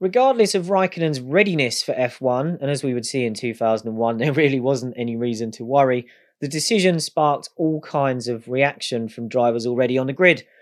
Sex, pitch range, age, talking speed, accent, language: male, 120-155 Hz, 30-49, 185 wpm, British, English